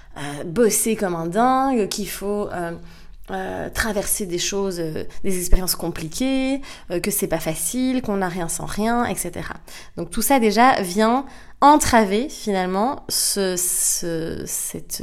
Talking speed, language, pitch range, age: 145 wpm, French, 175-225 Hz, 20-39